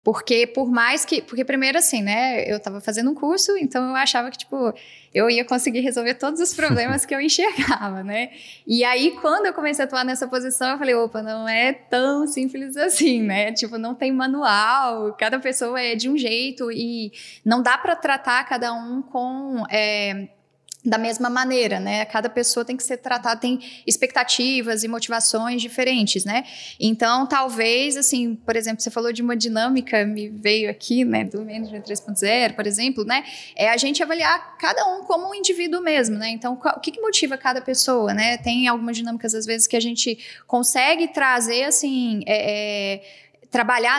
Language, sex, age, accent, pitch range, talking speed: Portuguese, female, 10-29, Brazilian, 230-270 Hz, 180 wpm